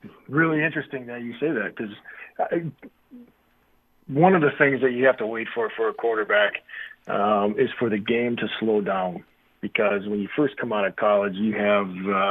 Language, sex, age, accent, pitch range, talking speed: English, male, 40-59, American, 110-140 Hz, 185 wpm